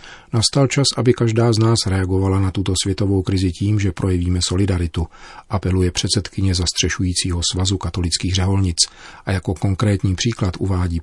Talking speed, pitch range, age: 140 wpm, 90-105 Hz, 40-59